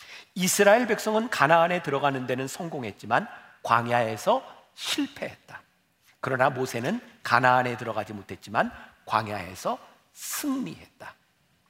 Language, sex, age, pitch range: Korean, male, 40-59, 155-235 Hz